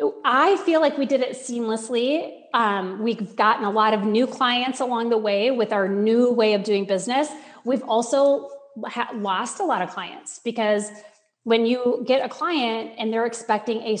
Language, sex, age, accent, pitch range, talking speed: English, female, 30-49, American, 210-270 Hz, 180 wpm